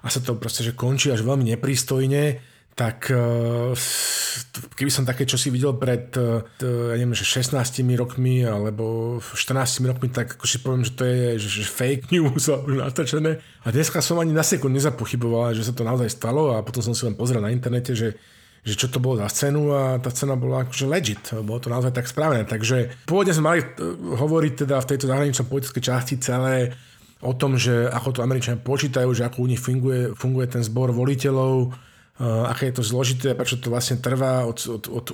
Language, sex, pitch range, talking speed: Slovak, male, 120-135 Hz, 200 wpm